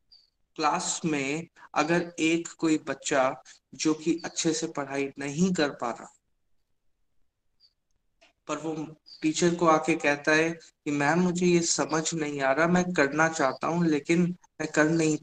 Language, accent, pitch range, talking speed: Hindi, native, 145-180 Hz, 150 wpm